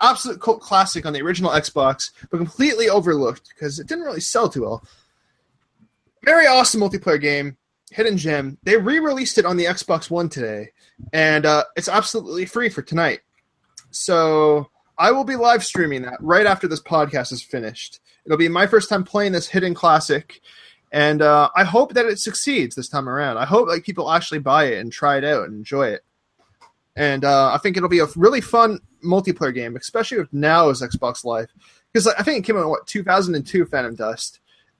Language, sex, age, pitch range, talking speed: English, male, 20-39, 150-205 Hz, 195 wpm